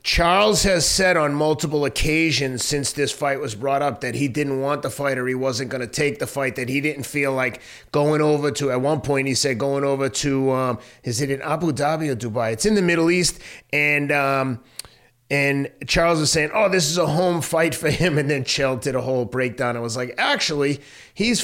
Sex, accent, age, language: male, American, 30-49, English